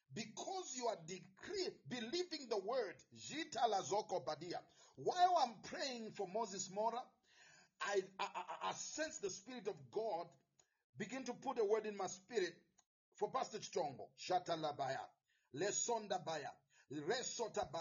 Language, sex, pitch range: English, male, 195-285 Hz